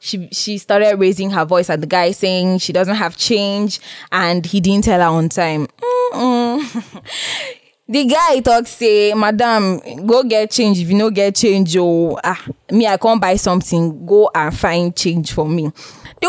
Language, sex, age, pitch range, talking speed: English, female, 10-29, 185-235 Hz, 175 wpm